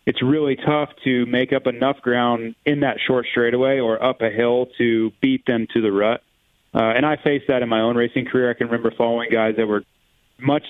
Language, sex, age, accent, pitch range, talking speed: English, male, 30-49, American, 115-140 Hz, 225 wpm